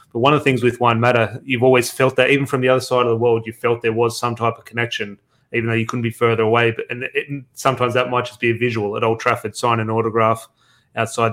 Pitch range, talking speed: 115-130 Hz, 275 wpm